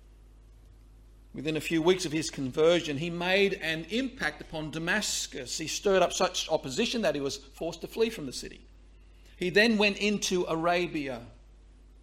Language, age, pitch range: English, 50-69, 155-200 Hz